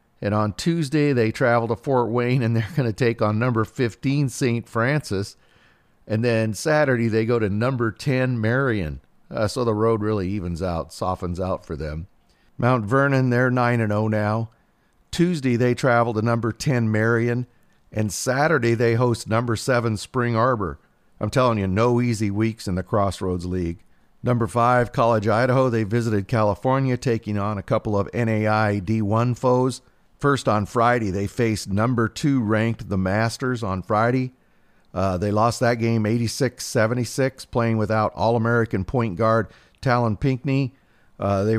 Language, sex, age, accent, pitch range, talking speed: English, male, 50-69, American, 105-125 Hz, 165 wpm